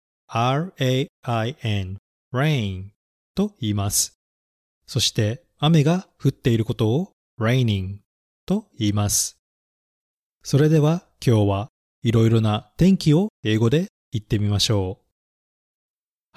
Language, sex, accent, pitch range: Japanese, male, native, 95-140 Hz